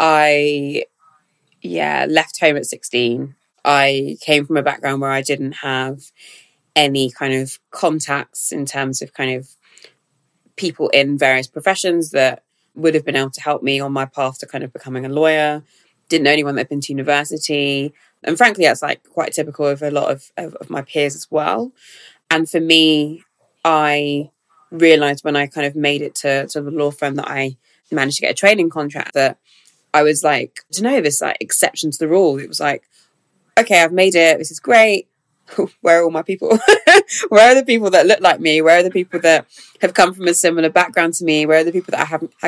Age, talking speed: 20-39, 210 wpm